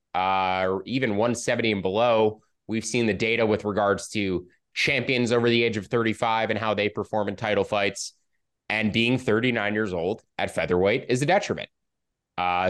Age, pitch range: 20-39, 110-150 Hz